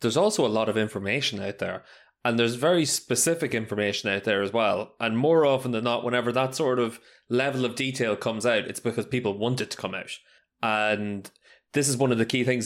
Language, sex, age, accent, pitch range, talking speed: English, male, 20-39, Irish, 115-135 Hz, 225 wpm